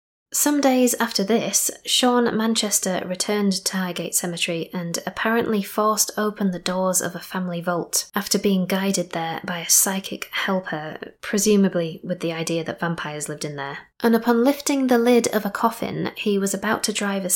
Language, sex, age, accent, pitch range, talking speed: English, female, 20-39, British, 175-210 Hz, 175 wpm